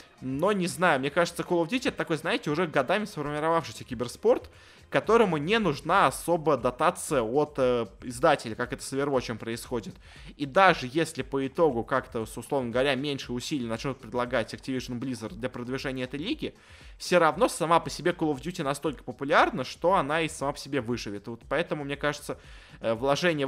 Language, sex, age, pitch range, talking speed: Russian, male, 20-39, 130-165 Hz, 175 wpm